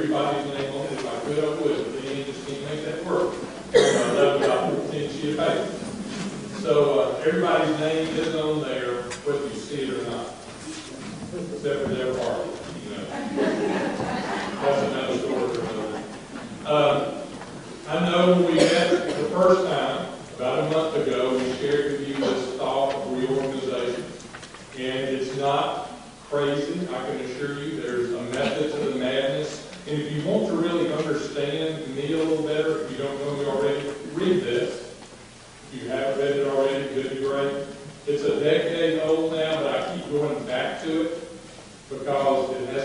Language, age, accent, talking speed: English, 40-59, American, 145 wpm